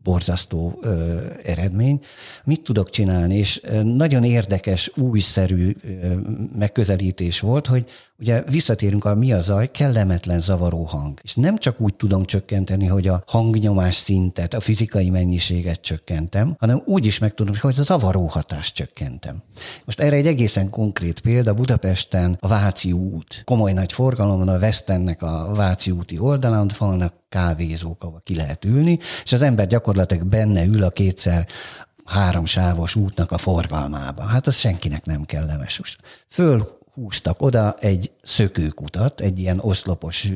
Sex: male